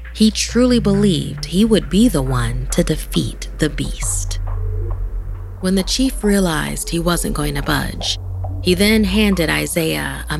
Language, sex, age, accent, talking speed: English, female, 30-49, American, 150 wpm